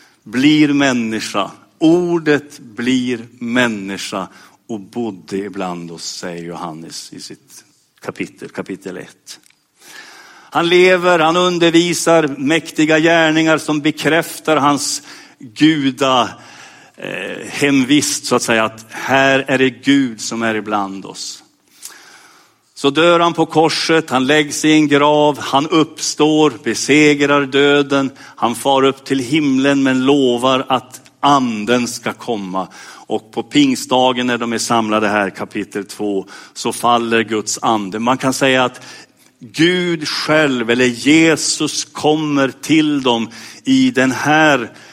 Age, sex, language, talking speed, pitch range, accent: 50-69, male, Swedish, 125 wpm, 110-150 Hz, native